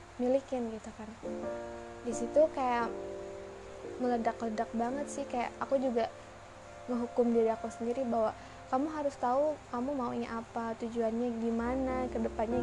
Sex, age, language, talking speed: female, 20-39, Indonesian, 130 wpm